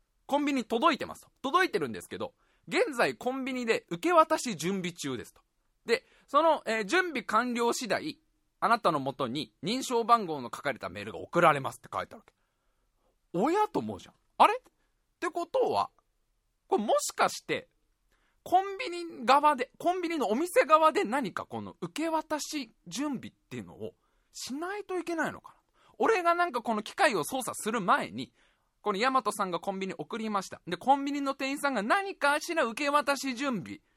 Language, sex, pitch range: Japanese, male, 190-310 Hz